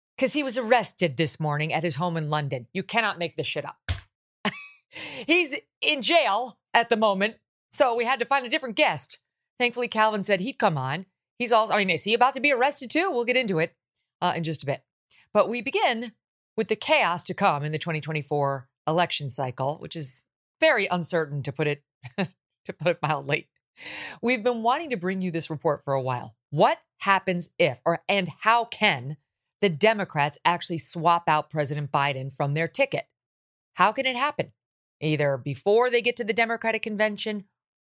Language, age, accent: English, 40-59, American